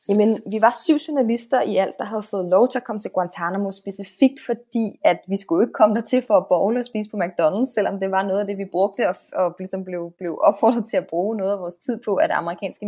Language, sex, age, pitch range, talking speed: Danish, female, 20-39, 185-225 Hz, 260 wpm